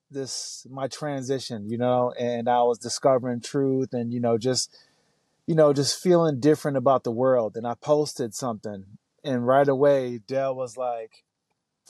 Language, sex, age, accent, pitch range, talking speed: English, male, 30-49, American, 120-140 Hz, 160 wpm